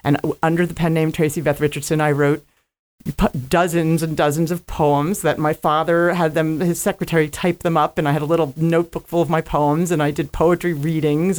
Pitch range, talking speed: 145-165 Hz, 210 wpm